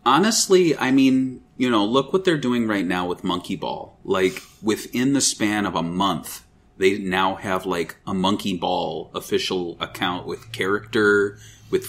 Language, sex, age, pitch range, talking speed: English, male, 30-49, 95-120 Hz, 165 wpm